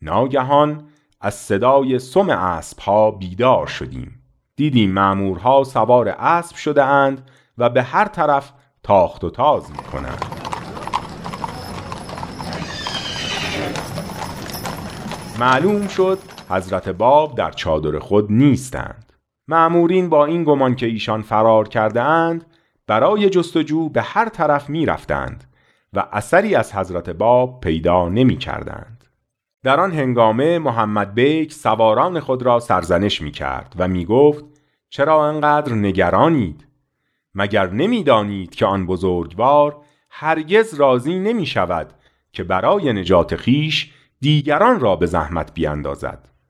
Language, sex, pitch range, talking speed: Persian, male, 105-150 Hz, 115 wpm